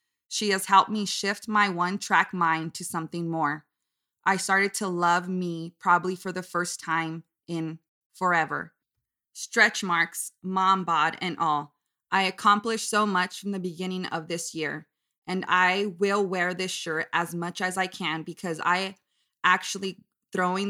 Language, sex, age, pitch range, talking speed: English, female, 20-39, 165-190 Hz, 155 wpm